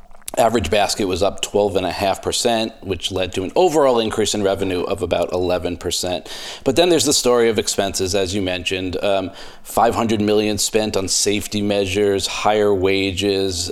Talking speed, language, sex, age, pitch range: 180 wpm, English, male, 40-59, 95-105 Hz